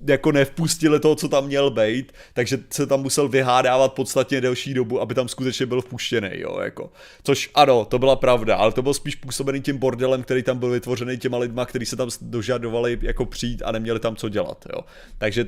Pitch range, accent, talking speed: 120-140 Hz, native, 205 wpm